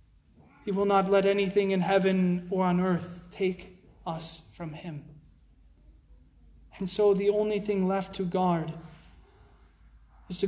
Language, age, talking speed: English, 20-39, 135 wpm